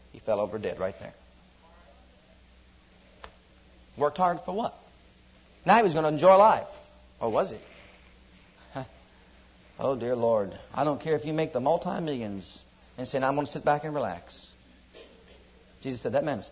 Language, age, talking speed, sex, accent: English, 50-69, 165 wpm, male, American